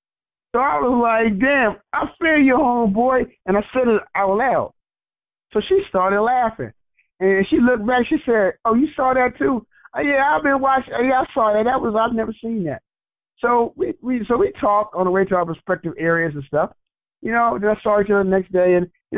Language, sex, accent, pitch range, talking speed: English, male, American, 170-230 Hz, 220 wpm